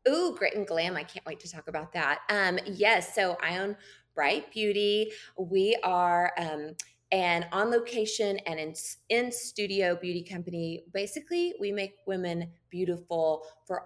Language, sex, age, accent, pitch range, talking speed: English, female, 20-39, American, 155-200 Hz, 155 wpm